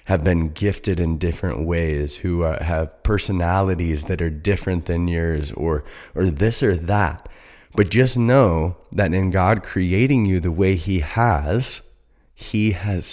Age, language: 30-49, English